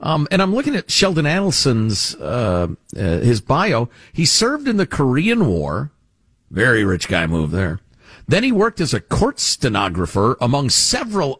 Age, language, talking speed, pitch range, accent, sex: 50-69, English, 165 wpm, 105-175 Hz, American, male